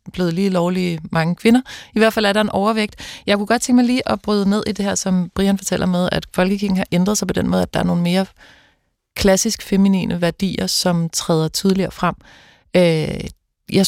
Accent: native